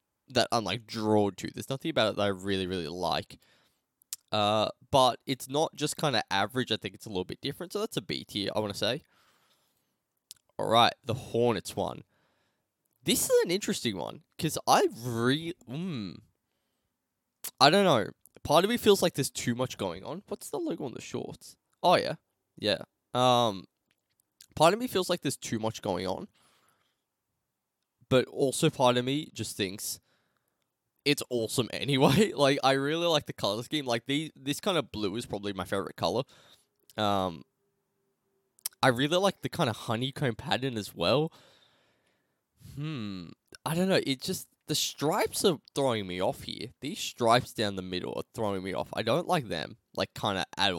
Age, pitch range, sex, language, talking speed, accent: 10-29, 105-150 Hz, male, English, 180 wpm, Australian